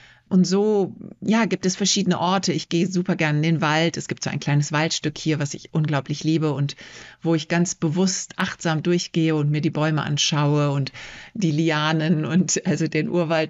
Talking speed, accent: 195 wpm, German